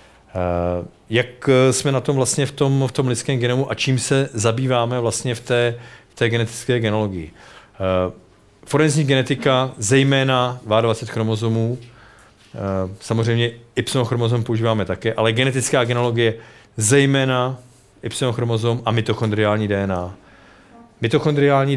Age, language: 40-59, Czech